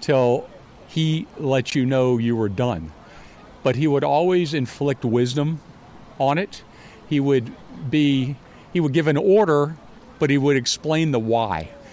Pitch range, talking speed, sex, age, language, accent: 120-150 Hz, 145 wpm, male, 50-69, English, American